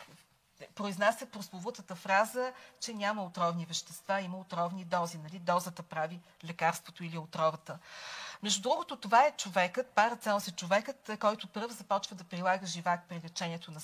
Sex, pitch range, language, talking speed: female, 175-225 Hz, Bulgarian, 150 wpm